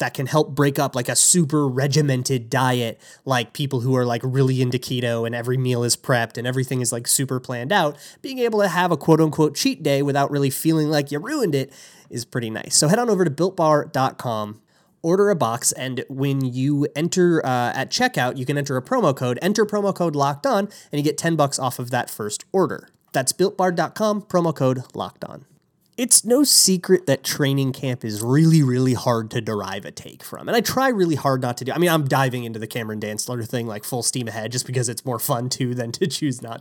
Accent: American